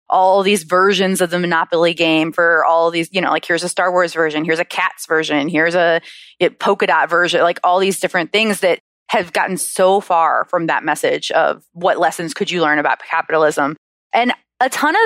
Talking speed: 210 wpm